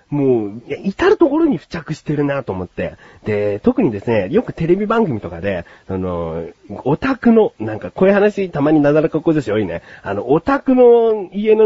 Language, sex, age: Japanese, male, 40-59